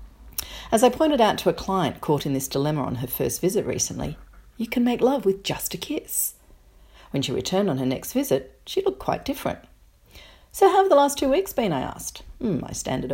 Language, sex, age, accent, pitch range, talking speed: English, female, 40-59, Australian, 155-250 Hz, 220 wpm